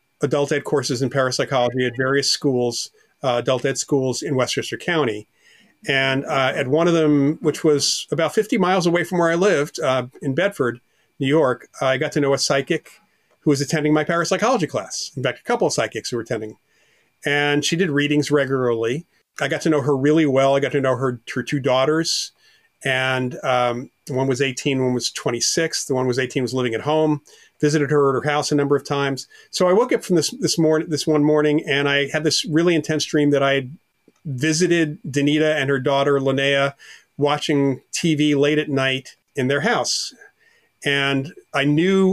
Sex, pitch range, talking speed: male, 130-155 Hz, 200 wpm